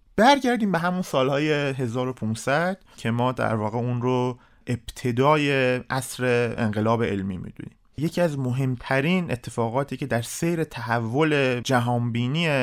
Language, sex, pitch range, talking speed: Persian, male, 115-150 Hz, 120 wpm